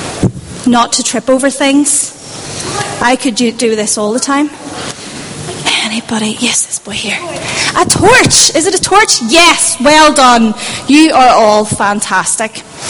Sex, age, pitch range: female, 30-49, 230-310 Hz